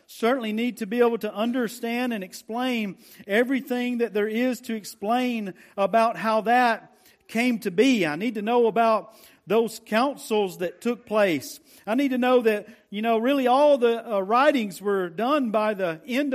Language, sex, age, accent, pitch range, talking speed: English, male, 50-69, American, 225-280 Hz, 175 wpm